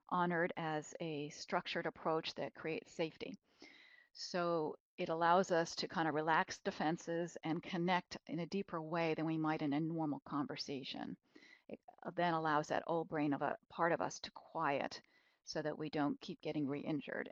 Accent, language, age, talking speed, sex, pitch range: American, English, 40-59, 175 wpm, female, 160-200 Hz